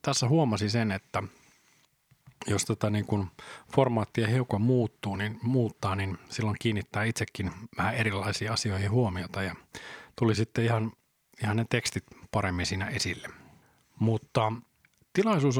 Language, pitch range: Finnish, 100-120 Hz